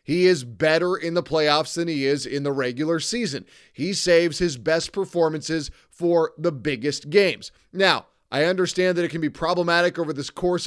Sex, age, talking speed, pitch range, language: male, 30-49, 185 wpm, 150-175 Hz, English